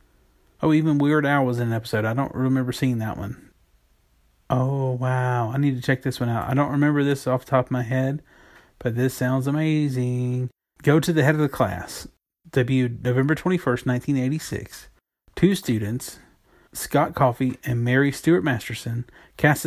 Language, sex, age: English, male, 30-49